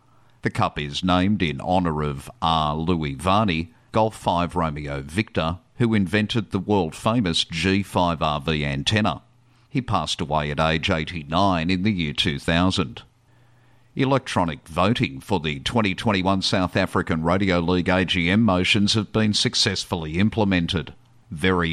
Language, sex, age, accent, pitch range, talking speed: English, male, 50-69, Australian, 85-110 Hz, 125 wpm